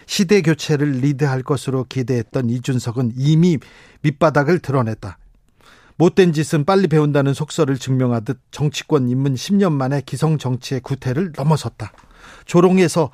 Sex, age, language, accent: male, 40-59, Korean, native